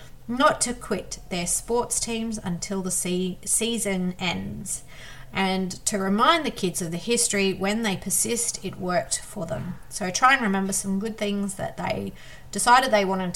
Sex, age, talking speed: female, 30-49, 175 wpm